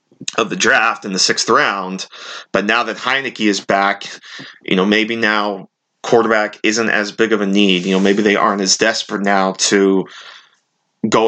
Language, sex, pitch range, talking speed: English, male, 100-115 Hz, 180 wpm